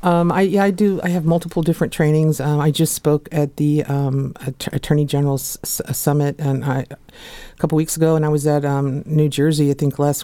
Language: English